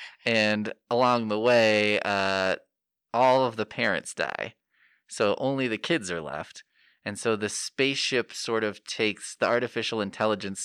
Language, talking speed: English, 145 wpm